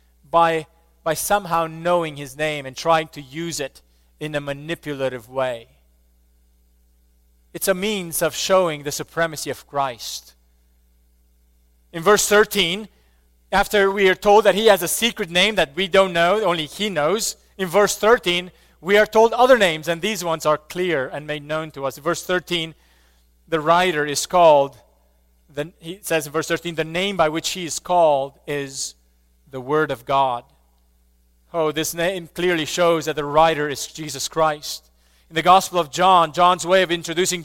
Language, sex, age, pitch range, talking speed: English, male, 30-49, 125-185 Hz, 170 wpm